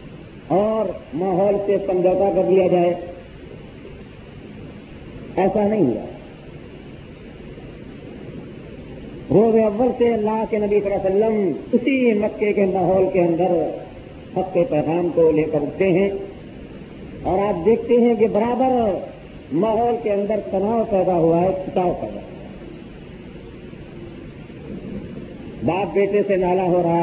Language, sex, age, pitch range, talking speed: Urdu, male, 50-69, 175-215 Hz, 120 wpm